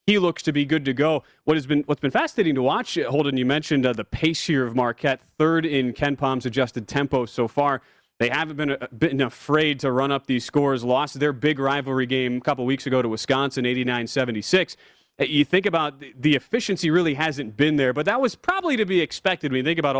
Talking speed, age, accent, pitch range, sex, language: 220 wpm, 30-49, American, 130-160 Hz, male, English